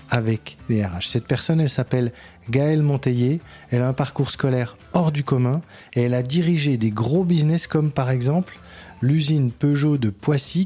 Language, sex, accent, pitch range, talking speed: French, male, French, 115-150 Hz, 175 wpm